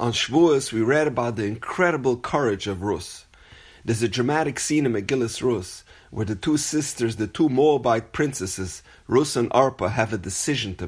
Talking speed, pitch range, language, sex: 175 wpm, 100-140 Hz, English, male